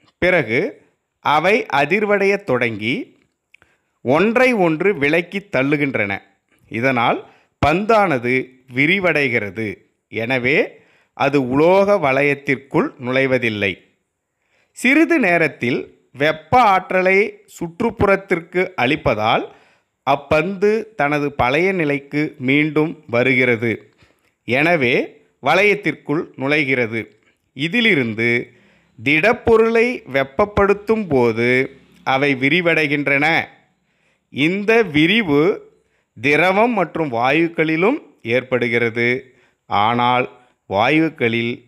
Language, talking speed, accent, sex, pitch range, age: Tamil, 65 wpm, native, male, 125-190 Hz, 30-49